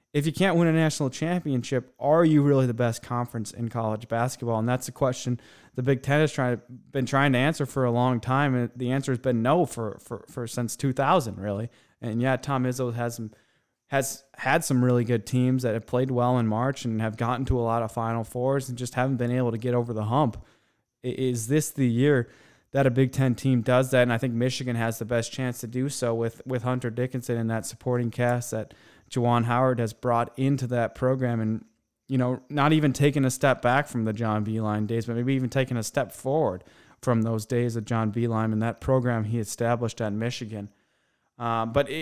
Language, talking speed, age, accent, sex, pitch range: English, 225 wpm, 20-39, American, male, 115-135 Hz